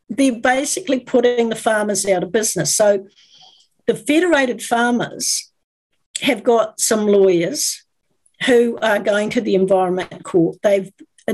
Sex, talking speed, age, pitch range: female, 125 wpm, 50-69, 190-245 Hz